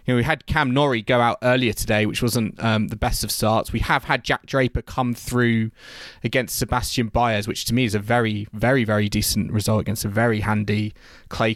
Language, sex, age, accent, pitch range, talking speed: English, male, 20-39, British, 110-130 Hz, 210 wpm